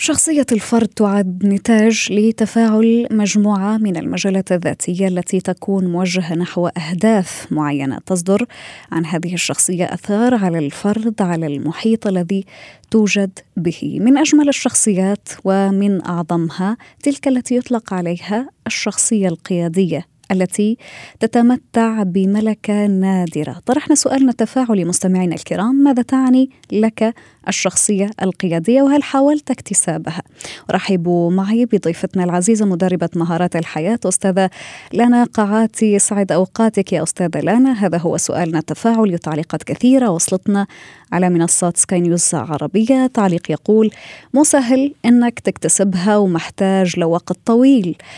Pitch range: 175-225 Hz